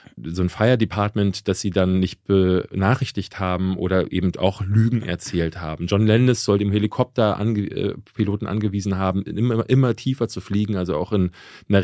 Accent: German